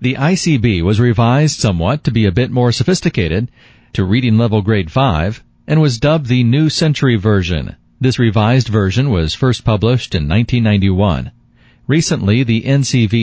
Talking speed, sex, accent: 155 wpm, male, American